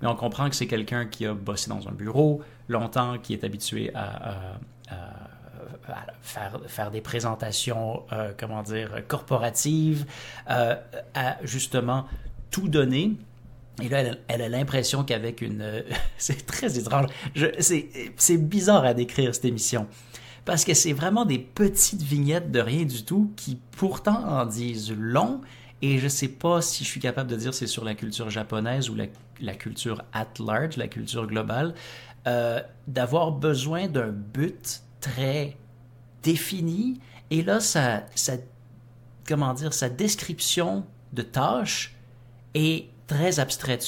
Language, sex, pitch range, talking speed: French, male, 115-140 Hz, 150 wpm